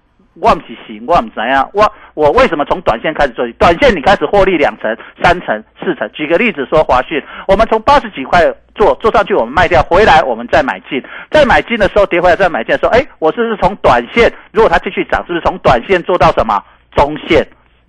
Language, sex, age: Chinese, male, 50-69